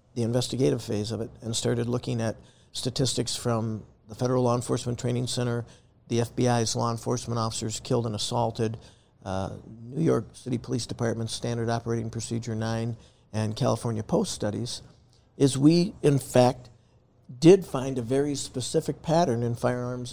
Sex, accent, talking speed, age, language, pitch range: male, American, 150 wpm, 50-69, English, 115-130 Hz